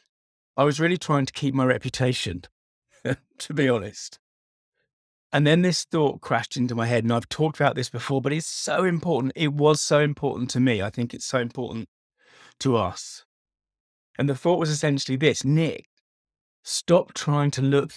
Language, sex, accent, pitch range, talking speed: English, male, British, 110-145 Hz, 175 wpm